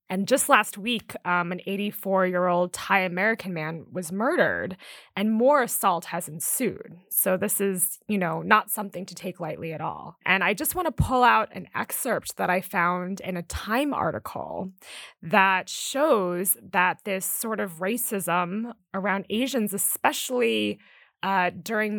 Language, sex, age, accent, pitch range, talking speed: English, female, 20-39, American, 180-220 Hz, 155 wpm